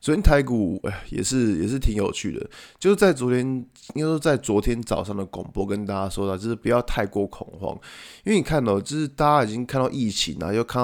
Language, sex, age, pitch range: Chinese, male, 20-39, 100-130 Hz